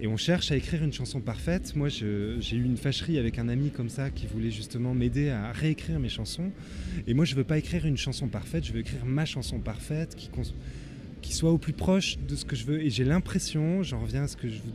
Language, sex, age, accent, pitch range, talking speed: French, male, 20-39, French, 115-155 Hz, 260 wpm